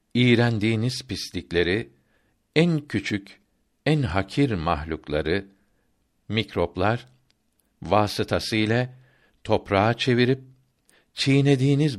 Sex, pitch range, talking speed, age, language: male, 95-120 Hz, 60 wpm, 60-79, Turkish